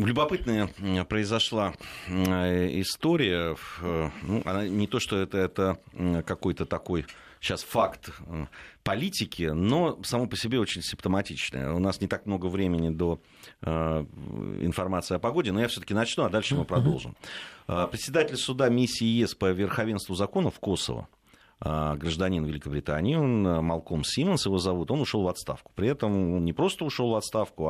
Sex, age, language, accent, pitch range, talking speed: male, 30-49, Russian, native, 80-110 Hz, 145 wpm